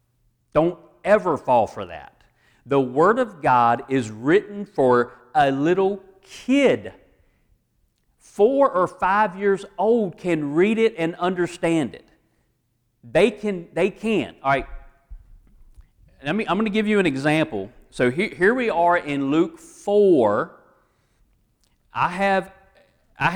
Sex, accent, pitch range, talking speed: male, American, 125-190 Hz, 135 wpm